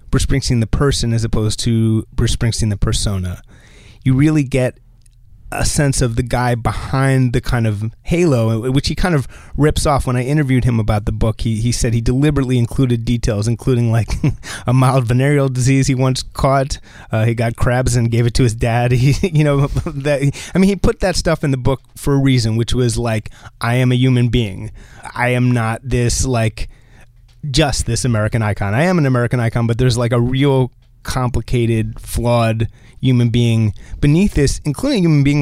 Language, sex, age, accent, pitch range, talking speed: English, male, 30-49, American, 115-135 Hz, 195 wpm